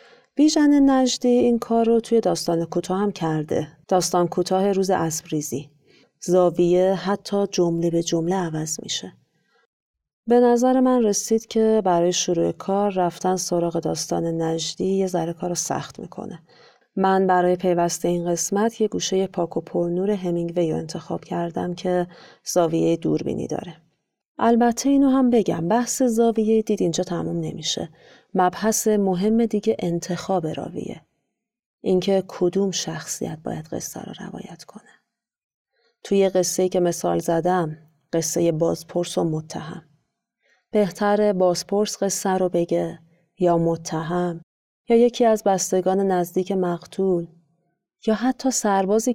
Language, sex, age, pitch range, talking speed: Persian, female, 40-59, 170-210 Hz, 130 wpm